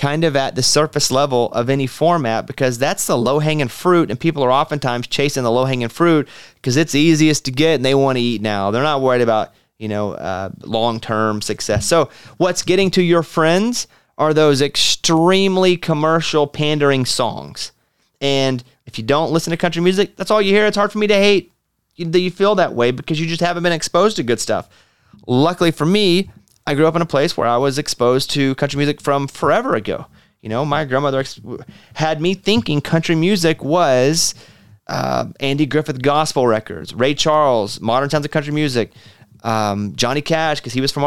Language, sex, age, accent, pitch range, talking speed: English, male, 30-49, American, 130-165 Hz, 205 wpm